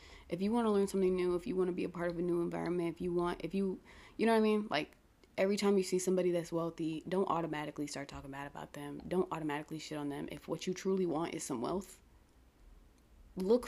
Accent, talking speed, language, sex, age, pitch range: American, 250 wpm, English, female, 20-39, 145-190 Hz